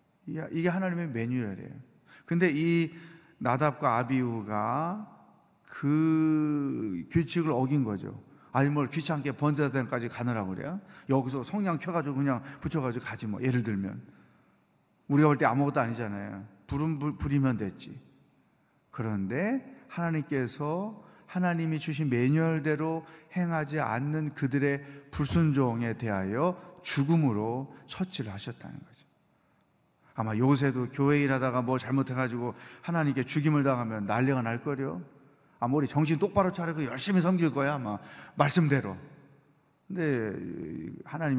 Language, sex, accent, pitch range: Korean, male, native, 125-165 Hz